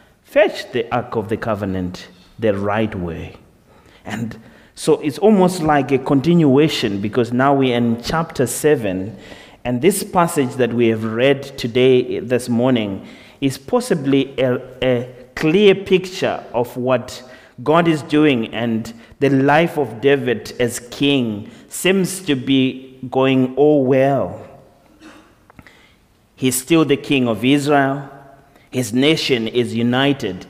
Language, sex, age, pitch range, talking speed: English, male, 30-49, 125-160 Hz, 130 wpm